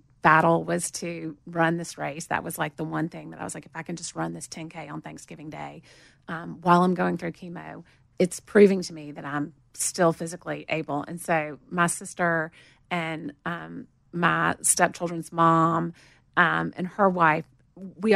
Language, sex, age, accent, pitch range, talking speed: English, female, 30-49, American, 160-195 Hz, 180 wpm